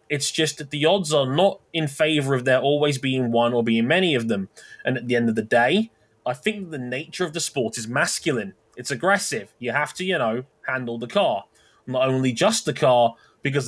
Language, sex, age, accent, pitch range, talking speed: English, male, 20-39, British, 115-150 Hz, 225 wpm